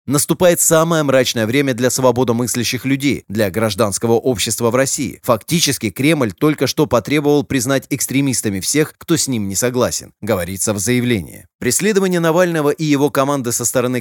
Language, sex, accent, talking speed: Russian, male, native, 150 wpm